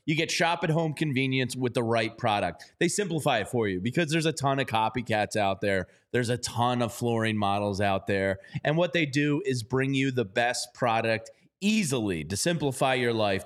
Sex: male